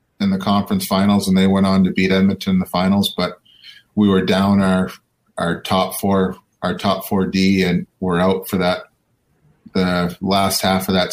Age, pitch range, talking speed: 30-49, 95-105 Hz, 195 wpm